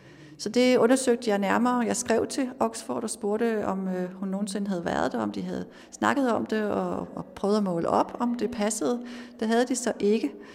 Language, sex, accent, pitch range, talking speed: Danish, female, native, 205-245 Hz, 205 wpm